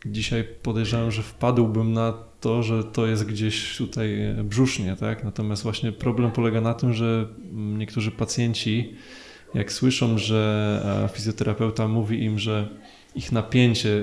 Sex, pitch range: male, 105-115 Hz